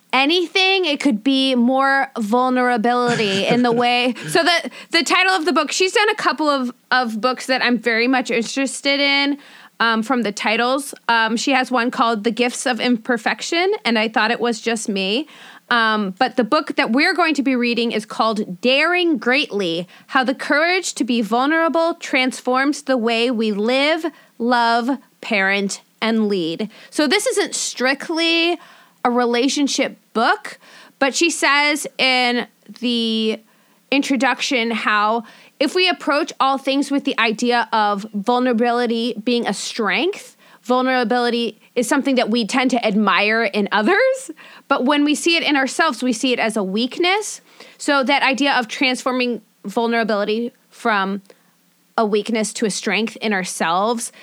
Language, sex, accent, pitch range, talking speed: English, female, American, 225-280 Hz, 155 wpm